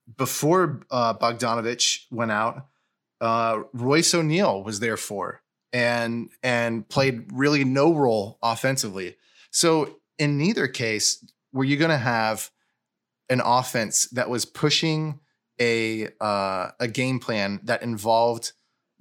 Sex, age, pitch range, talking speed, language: male, 20-39, 115-135 Hz, 125 wpm, English